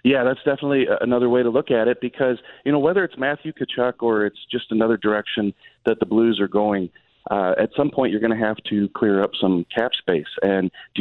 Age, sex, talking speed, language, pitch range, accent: 40-59, male, 230 wpm, English, 105-120 Hz, American